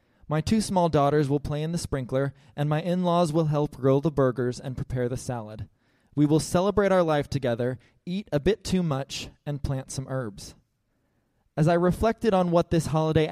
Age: 20-39